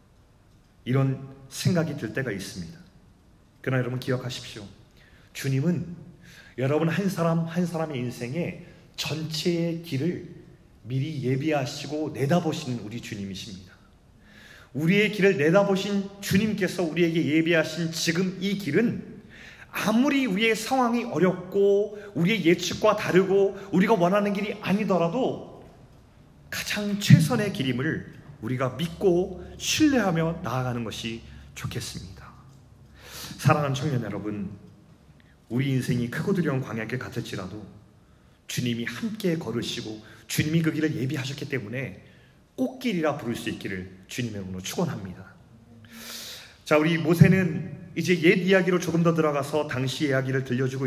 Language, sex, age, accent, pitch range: Korean, male, 30-49, native, 120-180 Hz